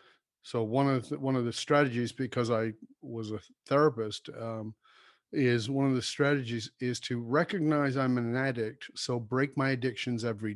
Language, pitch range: English, 115-140 Hz